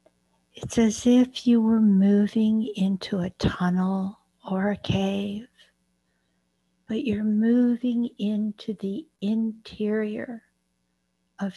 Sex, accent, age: female, American, 60-79